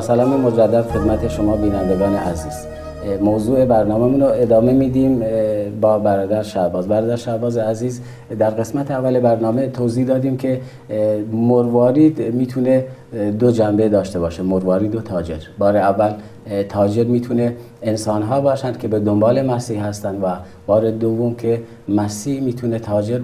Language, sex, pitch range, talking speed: Persian, male, 105-130 Hz, 135 wpm